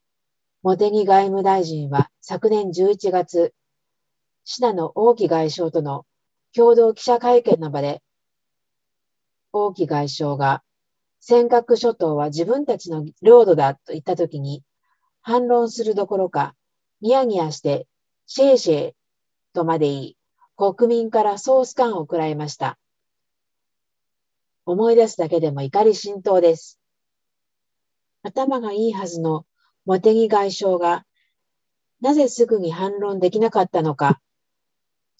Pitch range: 170-235 Hz